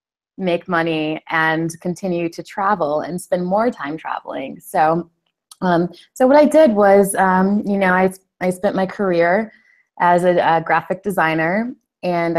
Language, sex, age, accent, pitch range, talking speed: English, female, 20-39, American, 165-190 Hz, 155 wpm